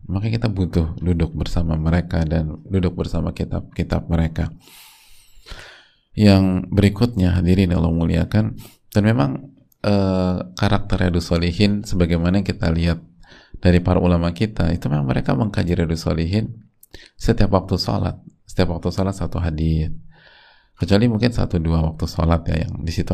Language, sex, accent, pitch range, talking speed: Indonesian, male, native, 85-100 Hz, 135 wpm